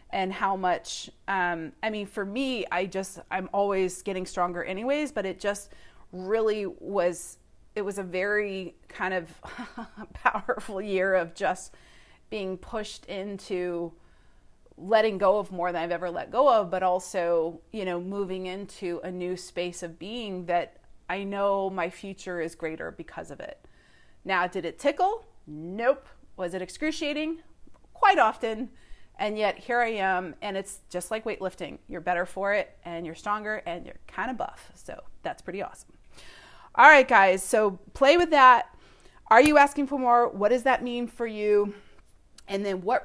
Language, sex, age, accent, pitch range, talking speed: English, female, 30-49, American, 185-230 Hz, 170 wpm